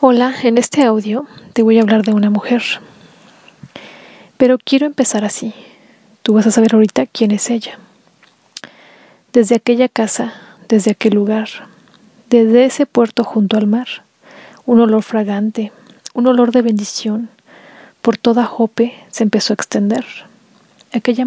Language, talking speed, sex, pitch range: Spanish, 140 wpm, female, 215-240 Hz